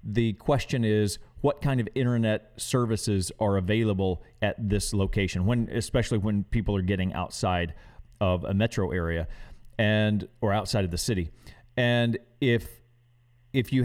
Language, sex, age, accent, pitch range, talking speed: English, male, 40-59, American, 105-125 Hz, 145 wpm